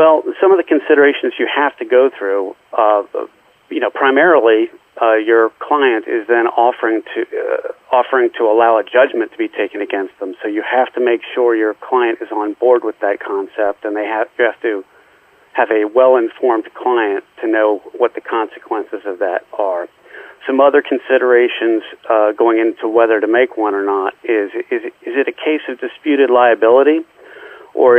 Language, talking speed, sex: English, 185 wpm, male